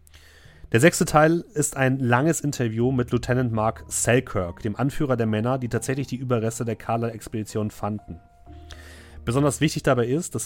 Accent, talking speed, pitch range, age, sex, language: German, 155 wpm, 105-125 Hz, 30-49, male, German